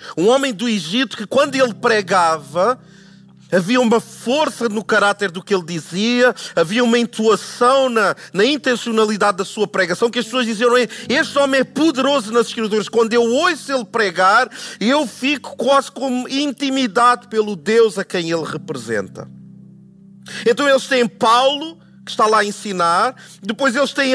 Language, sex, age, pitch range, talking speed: Portuguese, male, 40-59, 195-260 Hz, 160 wpm